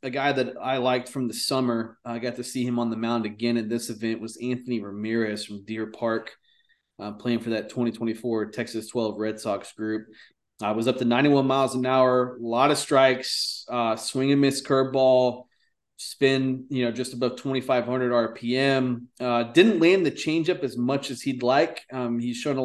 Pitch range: 115-140 Hz